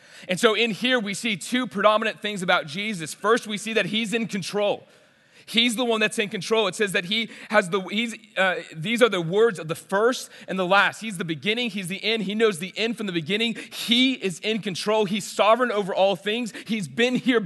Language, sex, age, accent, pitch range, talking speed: English, male, 30-49, American, 175-225 Hz, 230 wpm